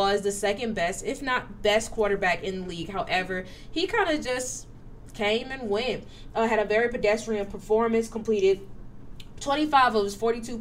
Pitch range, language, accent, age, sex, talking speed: 185-225 Hz, English, American, 20-39, female, 170 wpm